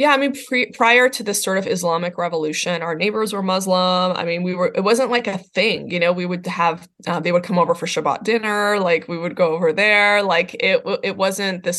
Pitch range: 175-200 Hz